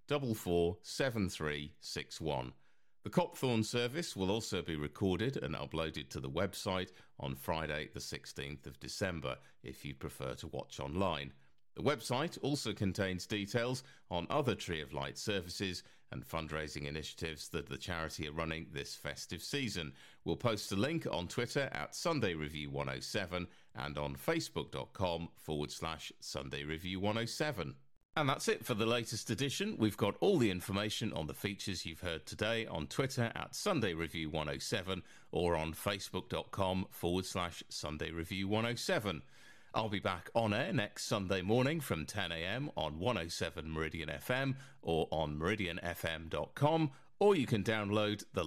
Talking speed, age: 145 wpm, 40-59